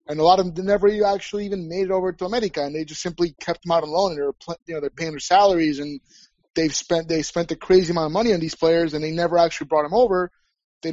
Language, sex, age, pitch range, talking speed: English, male, 30-49, 170-205 Hz, 275 wpm